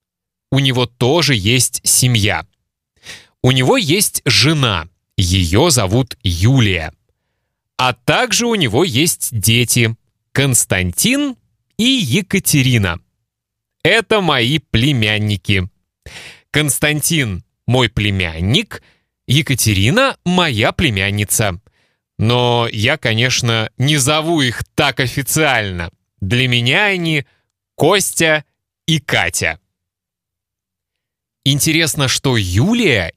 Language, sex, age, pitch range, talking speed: Russian, male, 20-39, 100-145 Hz, 85 wpm